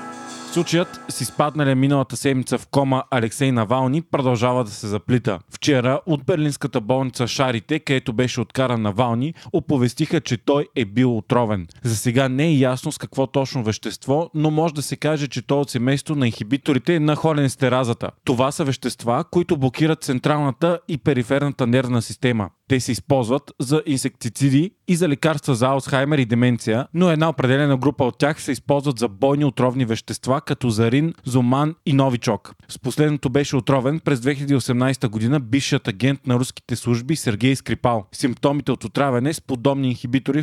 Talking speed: 165 wpm